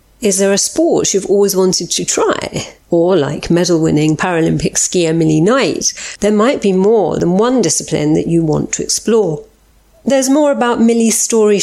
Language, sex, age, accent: English, female, 40-59, British